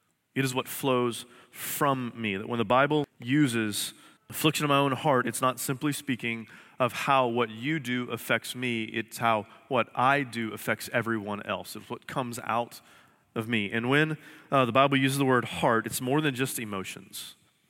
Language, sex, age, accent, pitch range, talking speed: English, male, 30-49, American, 115-135 Hz, 185 wpm